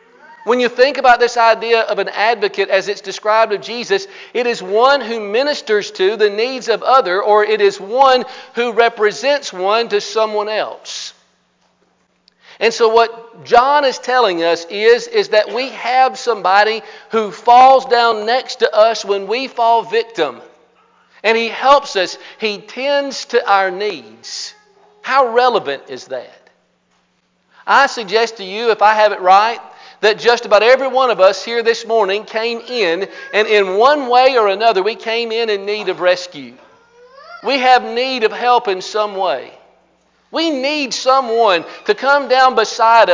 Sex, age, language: male, 50-69, English